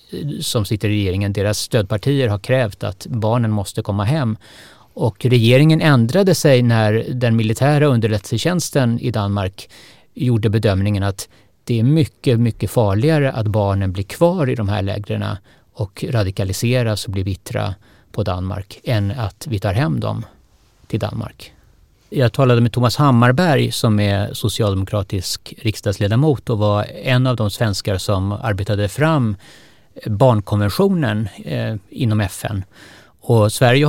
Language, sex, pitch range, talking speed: Swedish, male, 105-135 Hz, 135 wpm